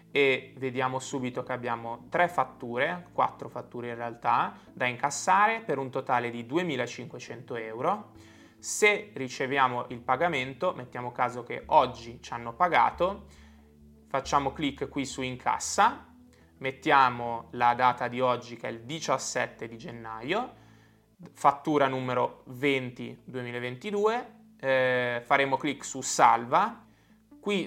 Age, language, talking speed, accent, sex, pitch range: 20-39, Italian, 120 wpm, native, male, 120-155 Hz